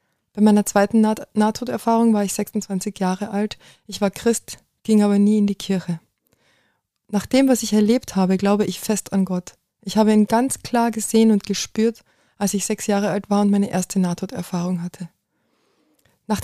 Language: German